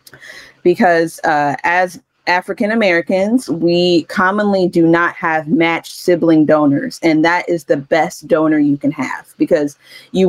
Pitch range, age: 155-180 Hz, 30-49